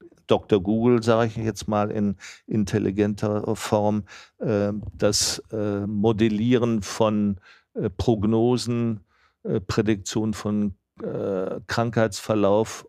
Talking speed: 75 wpm